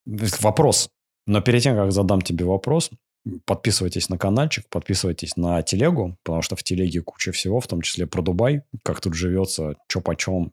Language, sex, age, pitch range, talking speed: Russian, male, 30-49, 90-115 Hz, 170 wpm